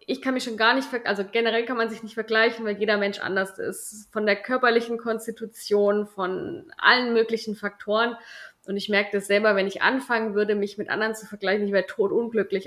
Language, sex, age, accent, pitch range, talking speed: German, female, 20-39, German, 205-230 Hz, 210 wpm